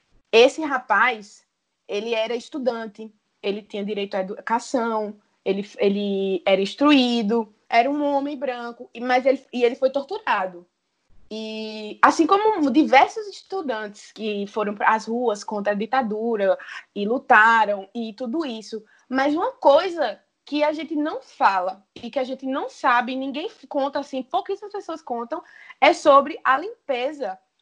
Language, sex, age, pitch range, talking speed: Portuguese, female, 20-39, 220-295 Hz, 145 wpm